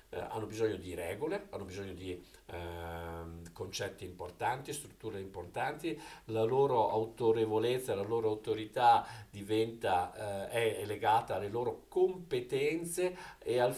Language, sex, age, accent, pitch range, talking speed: Italian, male, 50-69, native, 100-150 Hz, 115 wpm